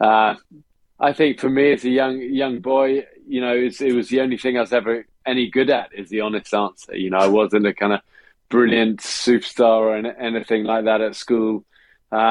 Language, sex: English, male